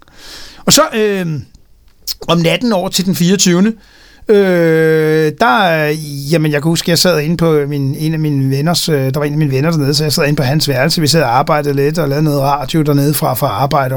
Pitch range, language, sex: 150-190 Hz, Danish, male